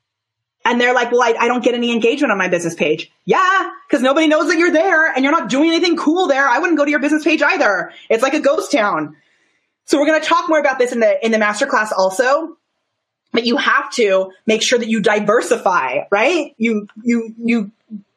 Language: English